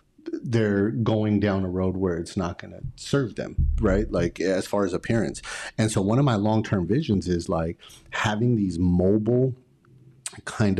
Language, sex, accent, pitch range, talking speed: English, male, American, 90-110 Hz, 170 wpm